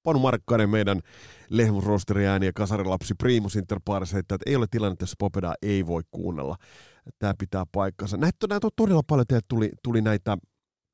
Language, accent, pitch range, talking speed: Finnish, native, 95-125 Hz, 145 wpm